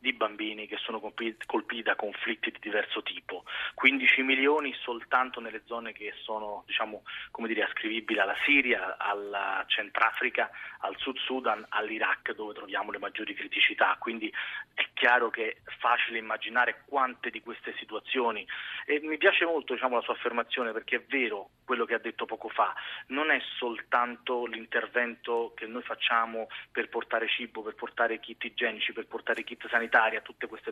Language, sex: Italian, male